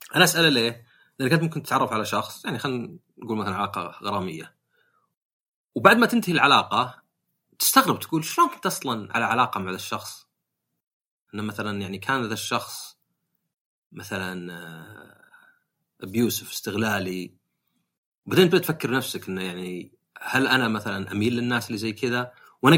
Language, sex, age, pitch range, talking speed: Arabic, male, 30-49, 105-155 Hz, 135 wpm